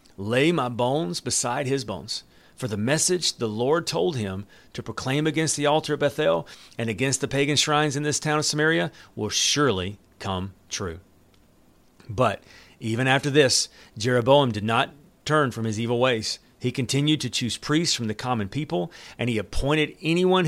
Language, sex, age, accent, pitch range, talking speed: English, male, 40-59, American, 105-150 Hz, 175 wpm